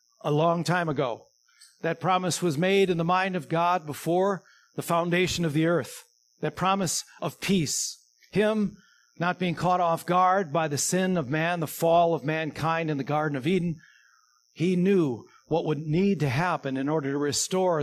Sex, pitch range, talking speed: male, 150-180 Hz, 180 wpm